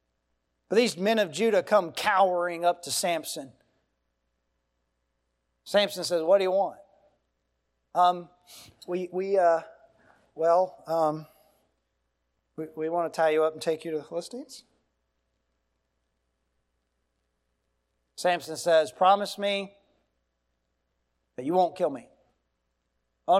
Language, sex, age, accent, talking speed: English, male, 40-59, American, 115 wpm